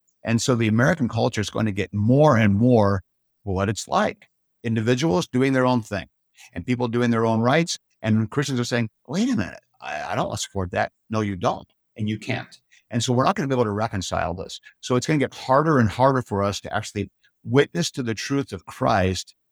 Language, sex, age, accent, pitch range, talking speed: English, male, 50-69, American, 100-125 Hz, 230 wpm